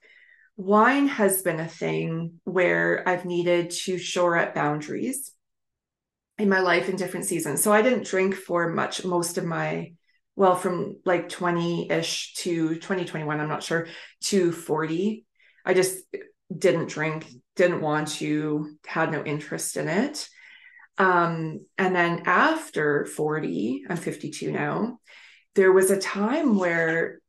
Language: English